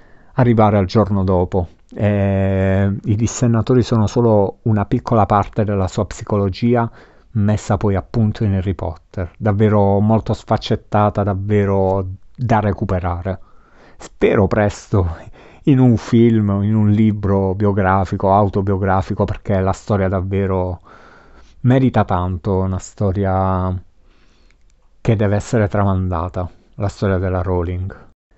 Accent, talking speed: native, 110 wpm